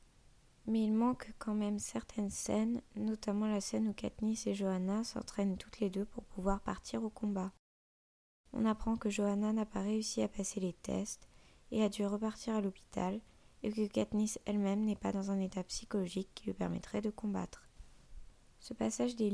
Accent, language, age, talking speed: French, French, 20-39, 180 wpm